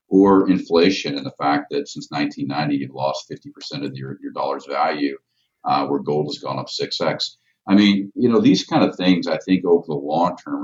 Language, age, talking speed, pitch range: English, 50-69, 210 wpm, 75-95 Hz